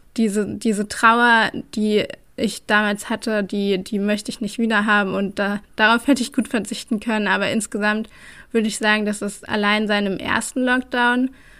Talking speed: 170 wpm